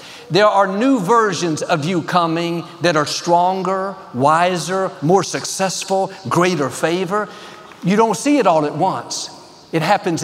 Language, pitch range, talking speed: English, 165-215 Hz, 140 wpm